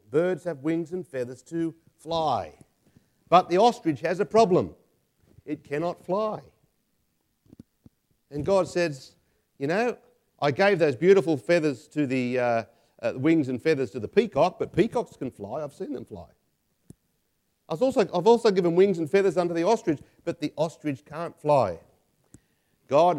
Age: 50-69